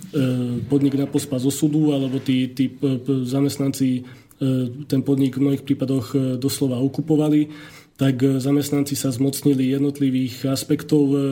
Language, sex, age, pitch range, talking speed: Slovak, male, 30-49, 130-145 Hz, 135 wpm